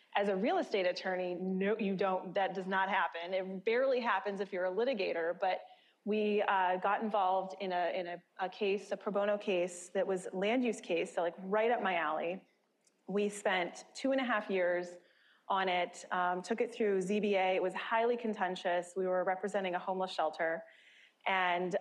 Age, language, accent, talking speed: 30-49, English, American, 195 wpm